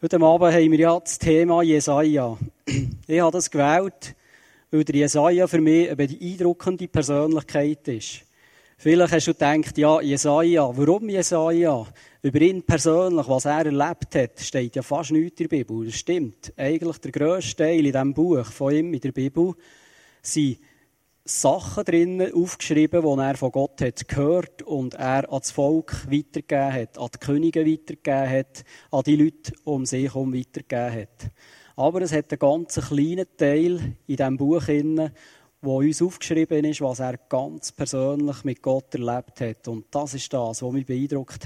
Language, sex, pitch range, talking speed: German, male, 130-160 Hz, 170 wpm